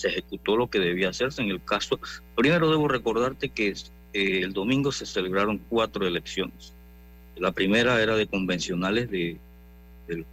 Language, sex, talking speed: Spanish, male, 150 wpm